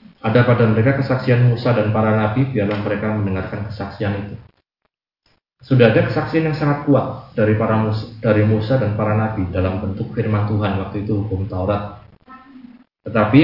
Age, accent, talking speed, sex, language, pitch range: 20-39, native, 160 wpm, male, Indonesian, 105-125 Hz